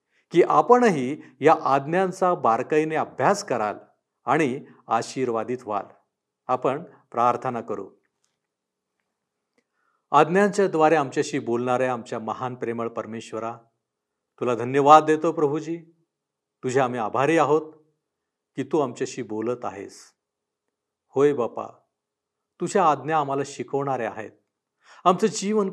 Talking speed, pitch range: 100 wpm, 120-155 Hz